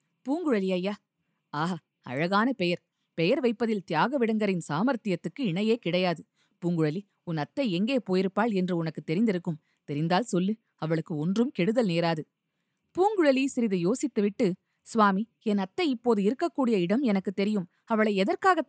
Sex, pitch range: female, 175-240 Hz